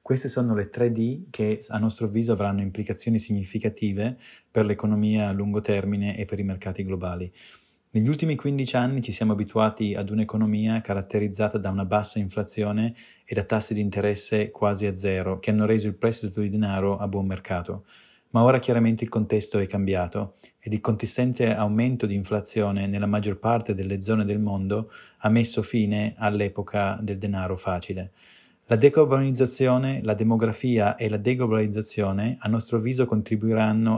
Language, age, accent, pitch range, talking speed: Italian, 20-39, native, 100-115 Hz, 160 wpm